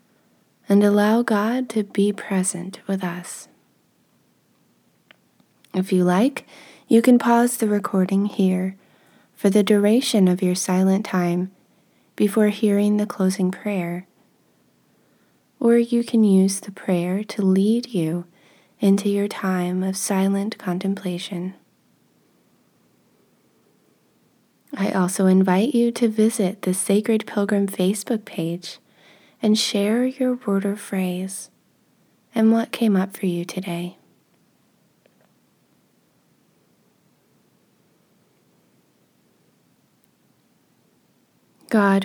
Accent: American